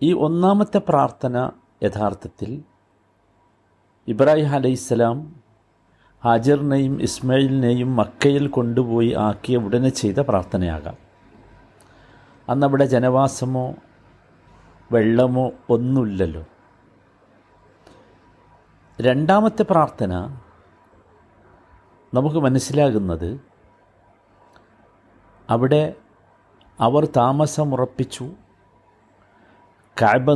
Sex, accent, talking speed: male, native, 55 wpm